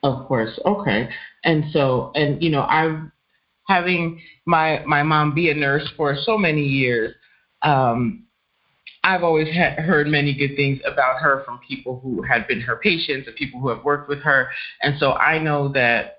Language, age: English, 30-49